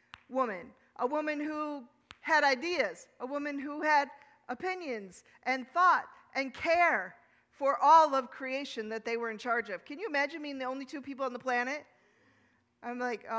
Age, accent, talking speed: 40-59, American, 170 wpm